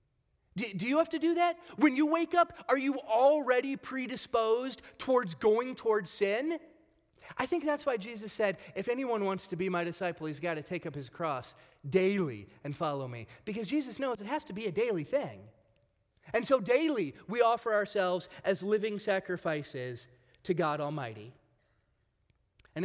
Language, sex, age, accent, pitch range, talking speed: English, male, 30-49, American, 175-245 Hz, 170 wpm